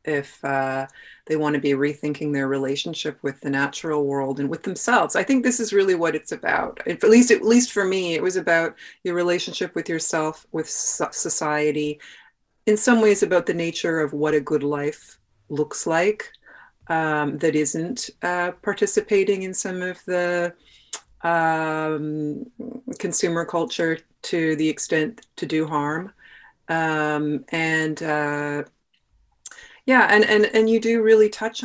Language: English